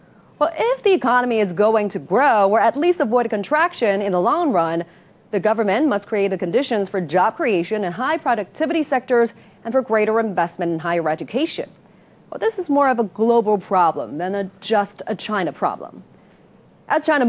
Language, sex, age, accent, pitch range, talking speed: English, female, 30-49, American, 190-260 Hz, 185 wpm